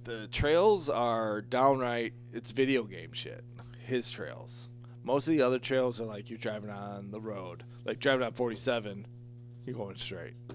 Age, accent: 20-39, American